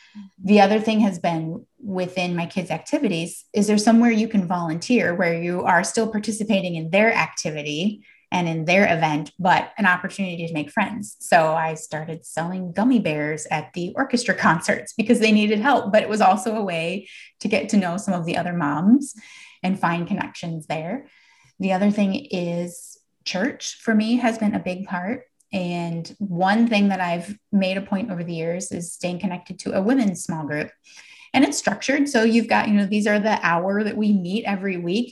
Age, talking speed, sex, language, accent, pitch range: 20-39, 195 wpm, female, English, American, 170-220 Hz